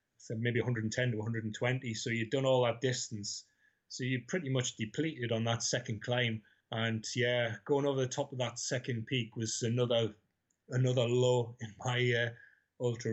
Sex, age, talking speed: male, 30-49, 175 wpm